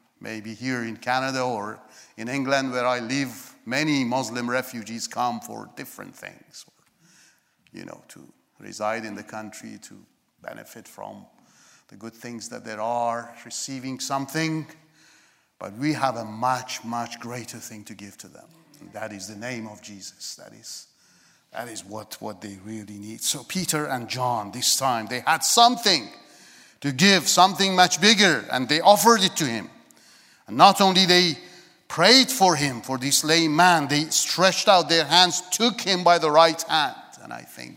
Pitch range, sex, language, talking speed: 110-160 Hz, male, English, 170 wpm